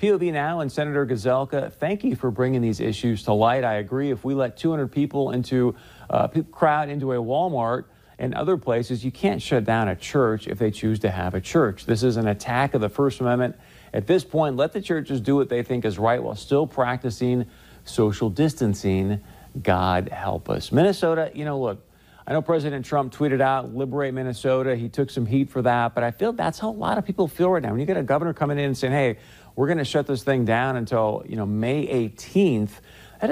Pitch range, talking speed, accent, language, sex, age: 115-145 Hz, 220 wpm, American, English, male, 50-69